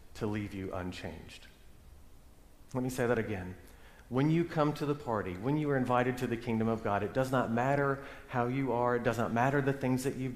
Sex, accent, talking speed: male, American, 225 wpm